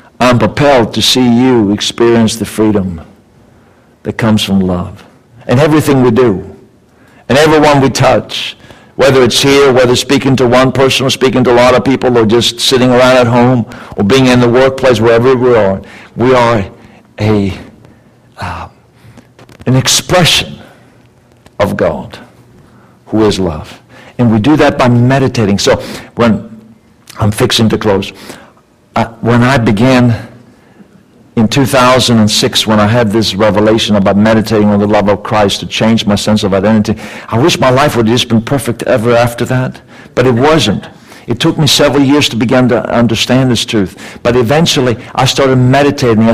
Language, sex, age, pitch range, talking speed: English, male, 60-79, 110-130 Hz, 165 wpm